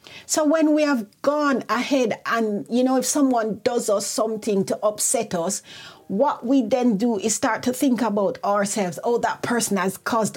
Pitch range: 185-255 Hz